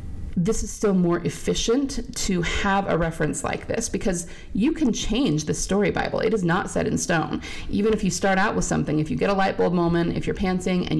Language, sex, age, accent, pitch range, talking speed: English, female, 30-49, American, 155-205 Hz, 230 wpm